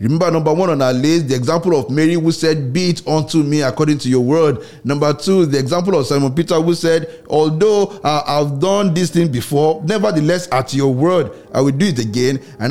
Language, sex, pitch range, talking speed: English, male, 125-160 Hz, 215 wpm